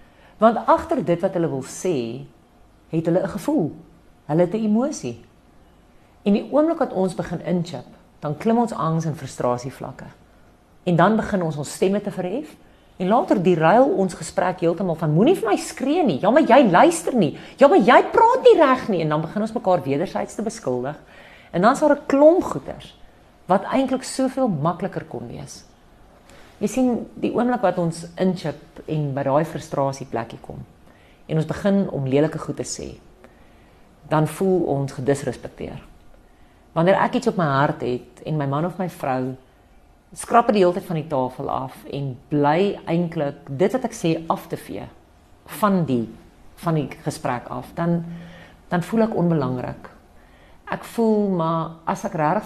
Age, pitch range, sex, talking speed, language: 40-59, 140-205 Hz, female, 180 wpm, English